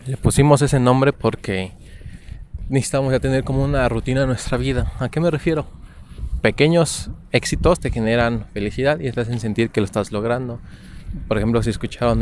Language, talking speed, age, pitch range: Spanish, 170 wpm, 20-39, 105-135 Hz